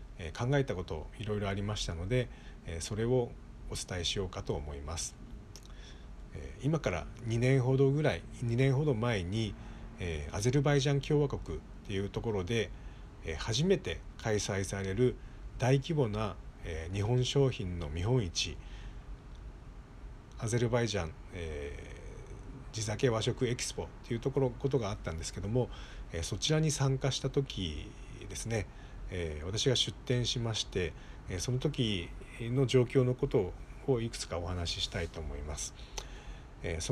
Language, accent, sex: Japanese, native, male